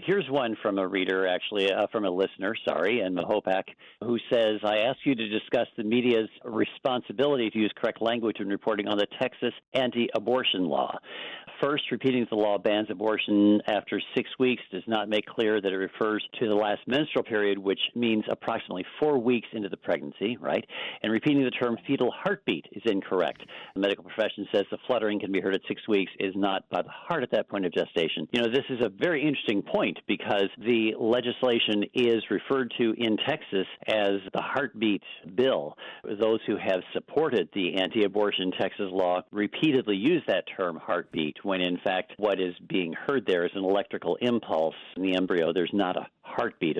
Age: 50-69